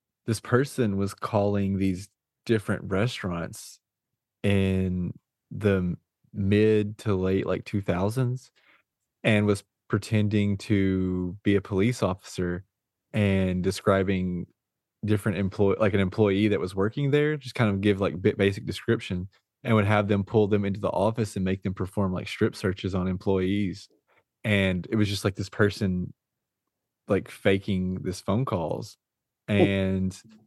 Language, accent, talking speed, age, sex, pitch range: English, American, 140 wpm, 20-39, male, 95-110 Hz